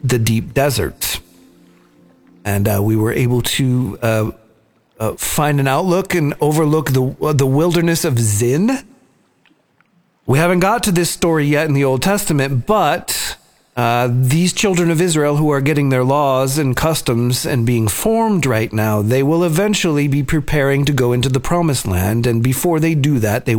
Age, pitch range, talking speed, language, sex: 40-59, 110-160 Hz, 175 wpm, English, male